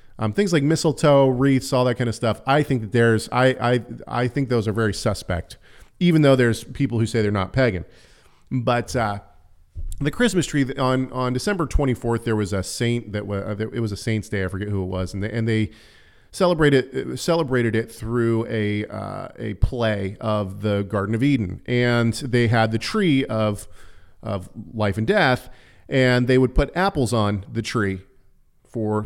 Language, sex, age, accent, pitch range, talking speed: English, male, 40-59, American, 105-130 Hz, 190 wpm